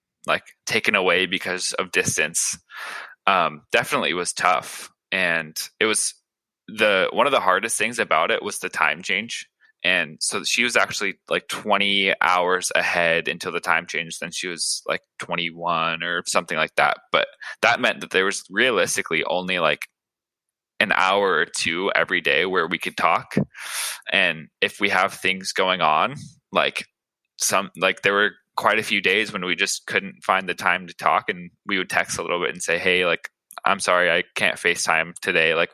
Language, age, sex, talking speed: English, 20-39, male, 185 wpm